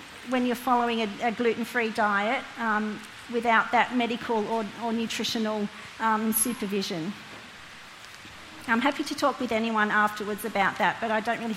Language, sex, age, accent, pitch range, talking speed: English, female, 40-59, Australian, 220-250 Hz, 150 wpm